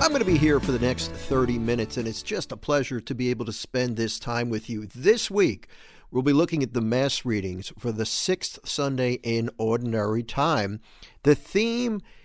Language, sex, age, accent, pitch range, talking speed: English, male, 50-69, American, 120-155 Hz, 205 wpm